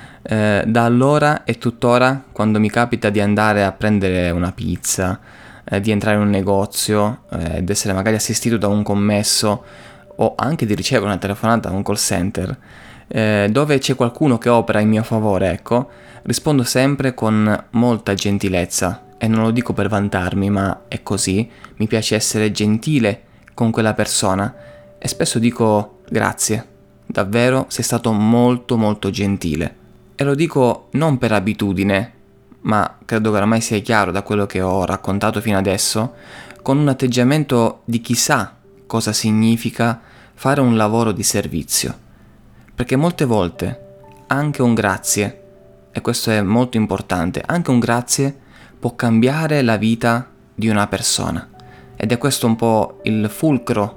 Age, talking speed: 20-39, 155 wpm